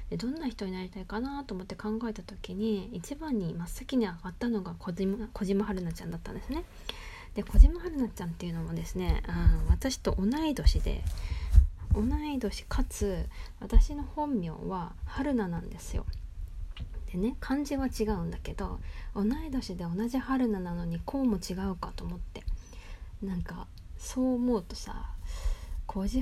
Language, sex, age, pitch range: Japanese, female, 20-39, 165-245 Hz